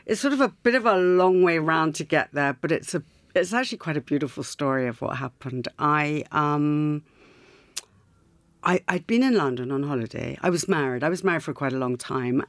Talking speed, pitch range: 205 wpm, 135-175 Hz